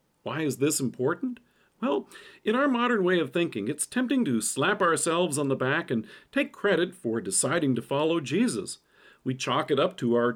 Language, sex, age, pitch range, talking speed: English, male, 50-69, 135-195 Hz, 190 wpm